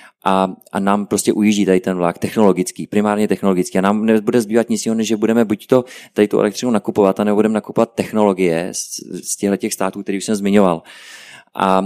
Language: Czech